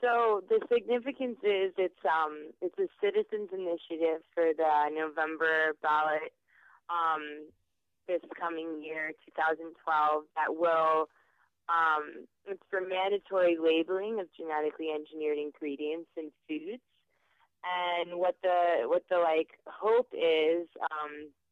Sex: female